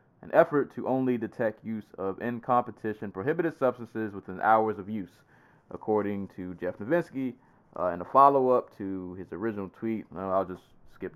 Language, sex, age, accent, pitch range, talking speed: English, male, 20-39, American, 90-115 Hz, 170 wpm